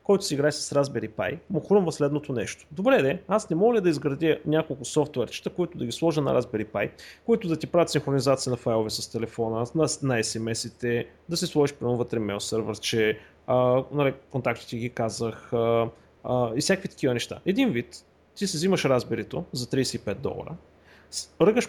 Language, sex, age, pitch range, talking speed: Bulgarian, male, 30-49, 120-165 Hz, 185 wpm